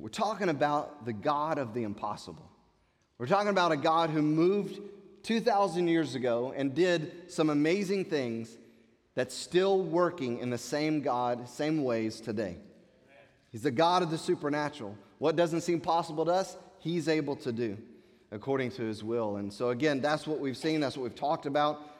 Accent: American